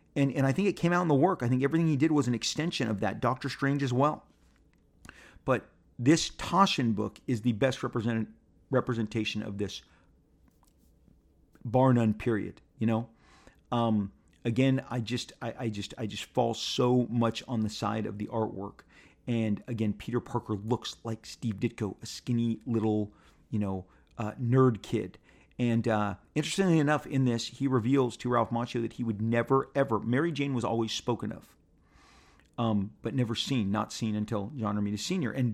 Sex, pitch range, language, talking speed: male, 105-130 Hz, English, 180 wpm